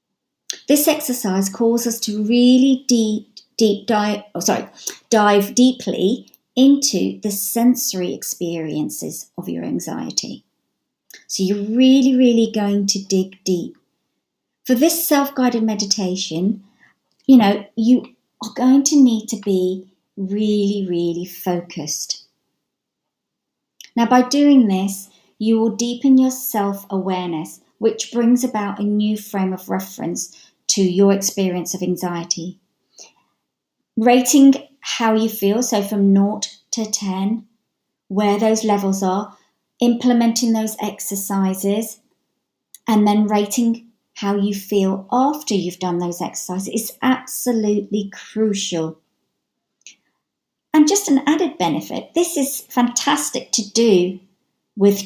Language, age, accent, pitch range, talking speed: English, 50-69, British, 195-240 Hz, 115 wpm